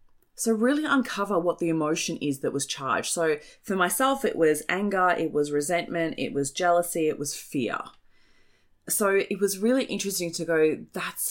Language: English